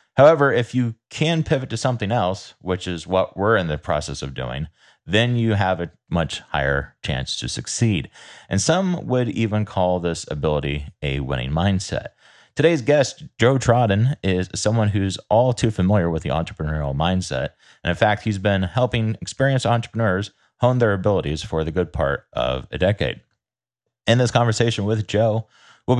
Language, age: English, 30-49